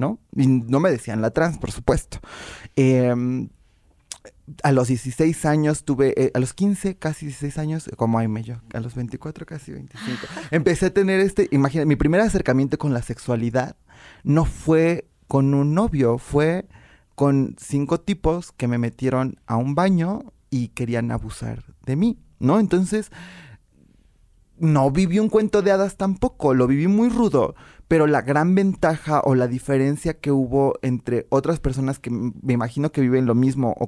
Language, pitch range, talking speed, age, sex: English, 125-165 Hz, 165 wpm, 30-49, male